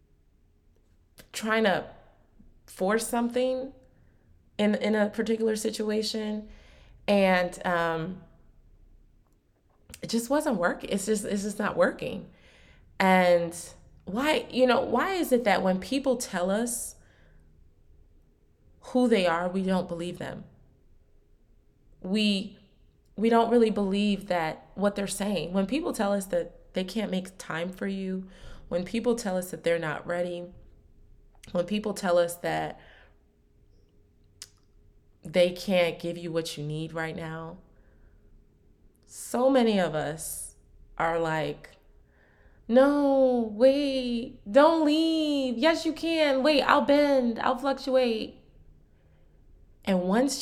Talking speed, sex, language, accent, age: 120 wpm, female, English, American, 20-39